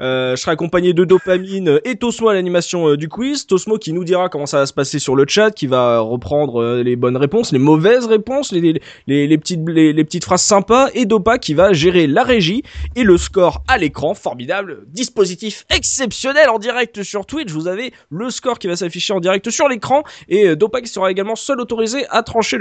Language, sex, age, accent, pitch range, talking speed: French, male, 20-39, French, 165-245 Hz, 225 wpm